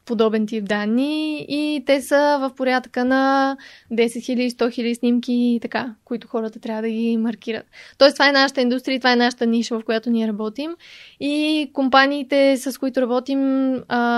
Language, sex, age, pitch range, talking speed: Bulgarian, female, 20-39, 230-255 Hz, 170 wpm